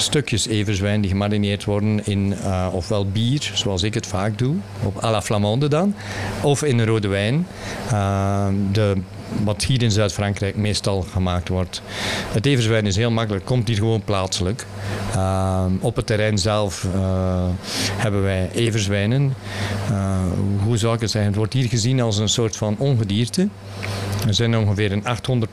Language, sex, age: Dutch, male, 50-69